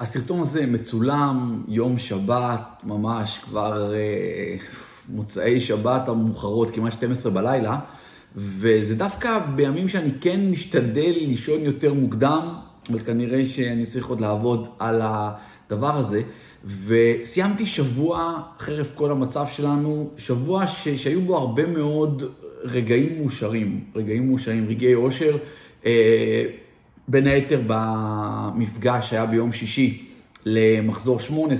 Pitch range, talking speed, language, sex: 115-140 Hz, 110 wpm, Hebrew, male